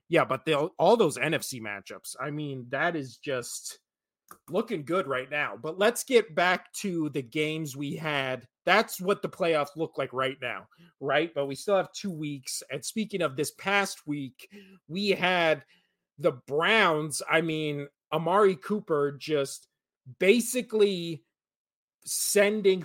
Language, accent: English, American